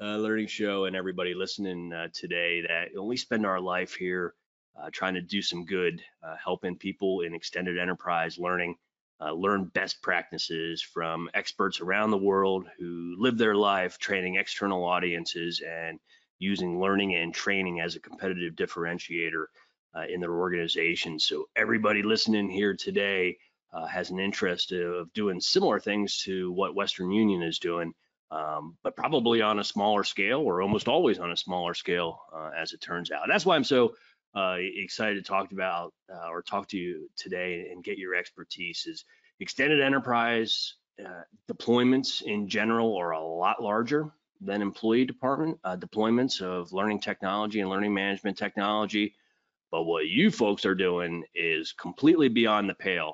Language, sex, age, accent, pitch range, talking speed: English, male, 30-49, American, 85-105 Hz, 165 wpm